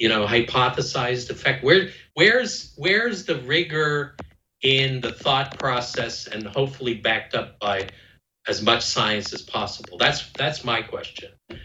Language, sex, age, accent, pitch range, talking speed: English, male, 50-69, American, 100-125 Hz, 140 wpm